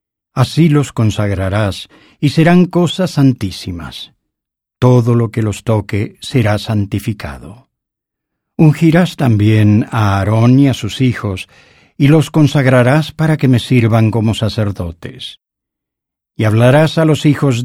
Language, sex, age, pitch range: English, male, 60-79, 105-140 Hz